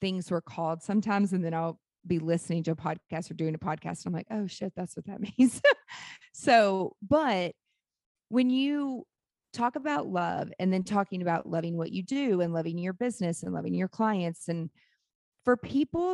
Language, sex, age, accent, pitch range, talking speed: English, female, 30-49, American, 170-210 Hz, 185 wpm